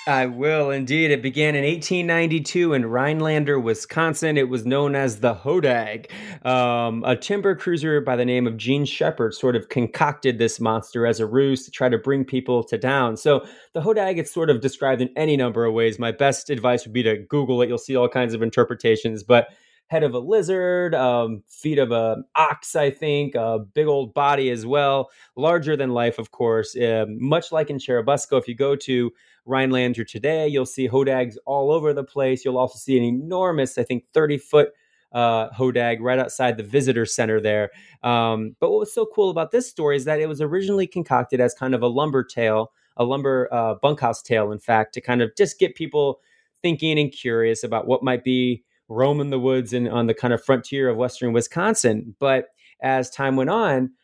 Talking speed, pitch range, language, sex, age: 200 wpm, 120-145 Hz, English, male, 30-49